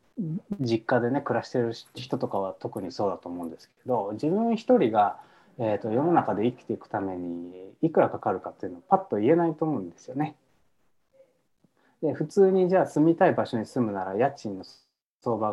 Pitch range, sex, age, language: 115-170 Hz, male, 20-39, Japanese